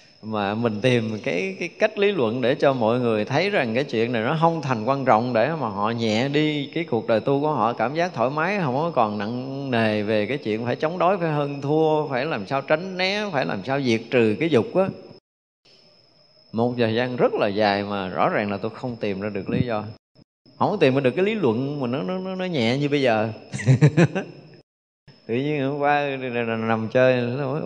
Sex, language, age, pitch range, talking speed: male, Vietnamese, 20-39, 115-160 Hz, 225 wpm